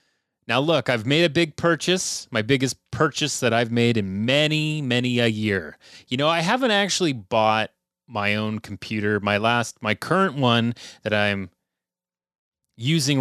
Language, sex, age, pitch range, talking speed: English, male, 30-49, 115-165 Hz, 160 wpm